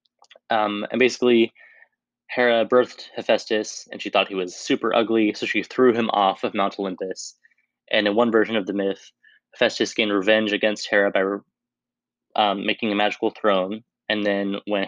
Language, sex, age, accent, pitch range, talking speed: English, male, 20-39, American, 100-115 Hz, 175 wpm